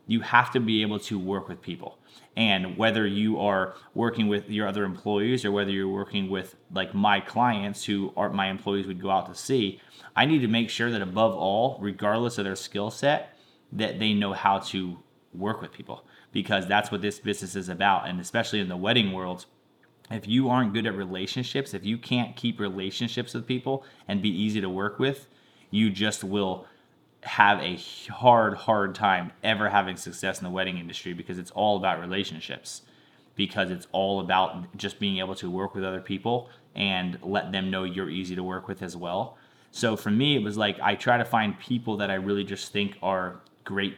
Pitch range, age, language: 95-110 Hz, 30-49, English